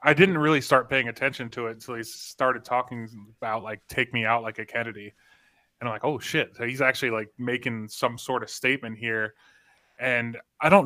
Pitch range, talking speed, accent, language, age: 115-135 Hz, 210 wpm, American, English, 20-39